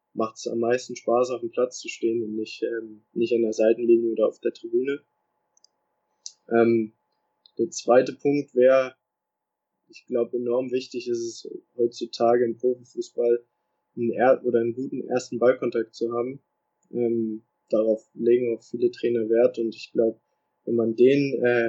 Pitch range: 115-130 Hz